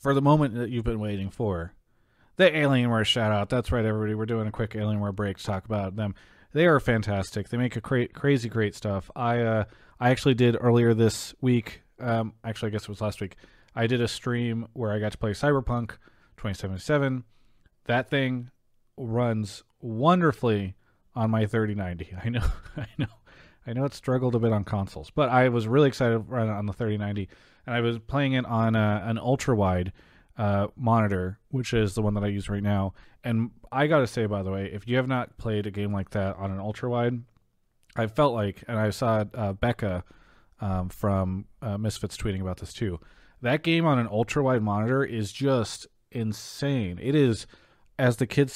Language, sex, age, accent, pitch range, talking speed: English, male, 30-49, American, 100-125 Hz, 195 wpm